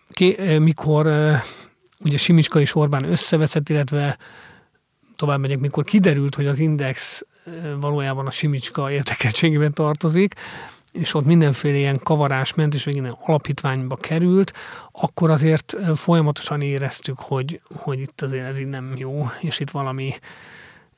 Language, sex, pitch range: Hungarian, male, 135-160 Hz